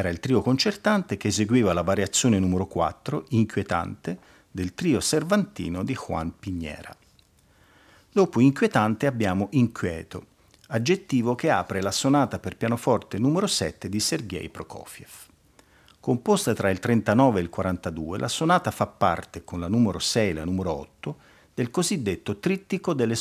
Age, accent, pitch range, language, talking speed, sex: 50-69, native, 95-130 Hz, Italian, 145 wpm, male